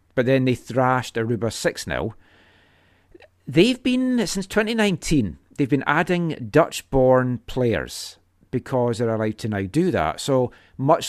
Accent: British